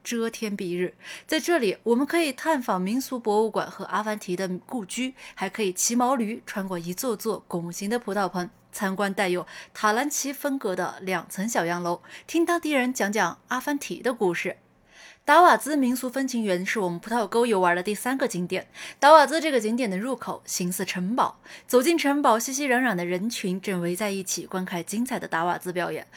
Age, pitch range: 20-39, 185-260 Hz